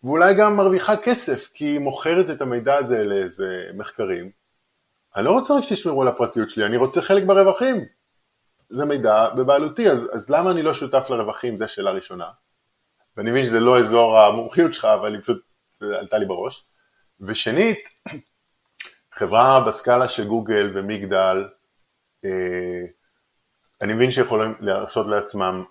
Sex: male